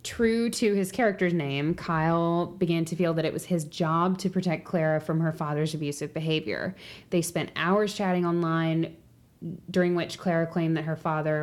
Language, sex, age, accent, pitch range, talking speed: English, female, 20-39, American, 150-175 Hz, 180 wpm